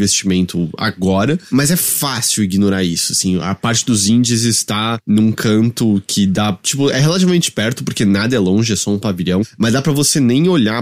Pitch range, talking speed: 100-145 Hz, 195 wpm